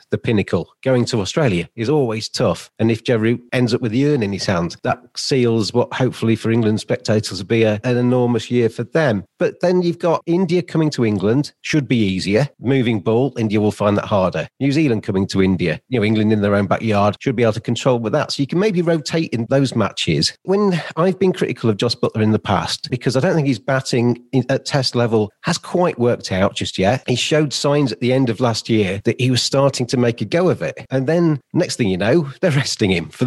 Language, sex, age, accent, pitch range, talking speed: English, male, 40-59, British, 110-145 Hz, 240 wpm